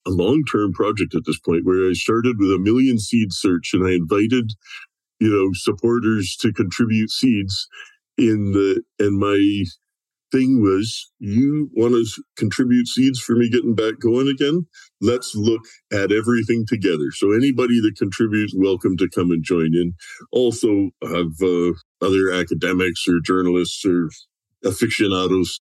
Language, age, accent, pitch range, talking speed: English, 50-69, American, 90-115 Hz, 150 wpm